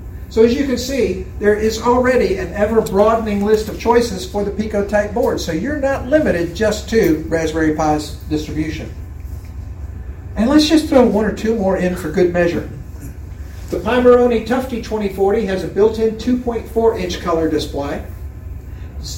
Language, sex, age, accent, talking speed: English, male, 50-69, American, 165 wpm